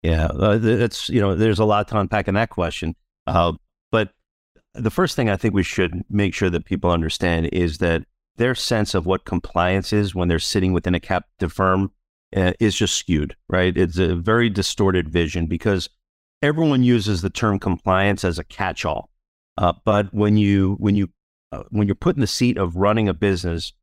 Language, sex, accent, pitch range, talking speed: English, male, American, 90-105 Hz, 195 wpm